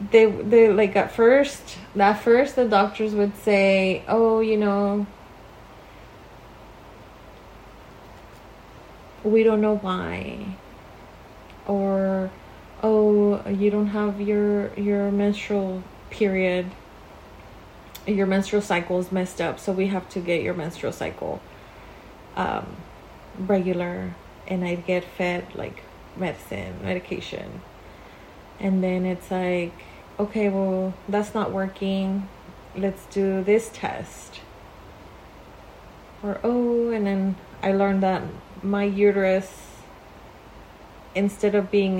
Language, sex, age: English, female, 30-49